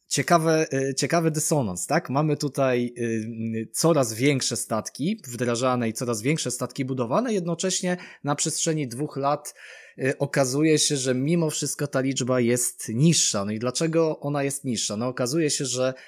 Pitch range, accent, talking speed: 120-150 Hz, native, 145 wpm